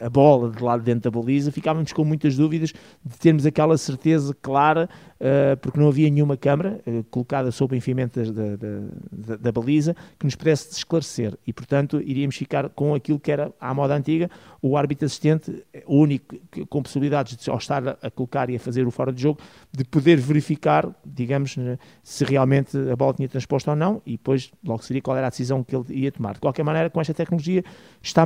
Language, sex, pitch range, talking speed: Portuguese, male, 130-155 Hz, 210 wpm